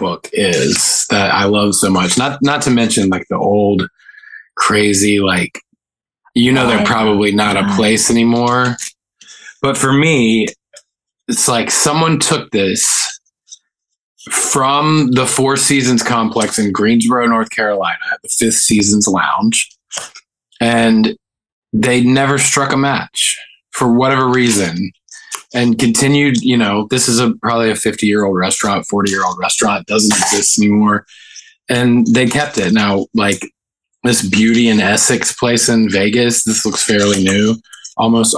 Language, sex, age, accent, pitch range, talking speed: English, male, 20-39, American, 105-130 Hz, 140 wpm